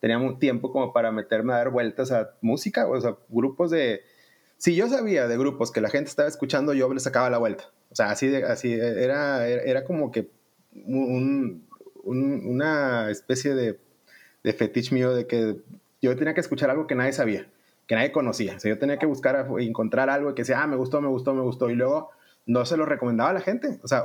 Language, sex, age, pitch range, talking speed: Spanish, male, 30-49, 115-140 Hz, 225 wpm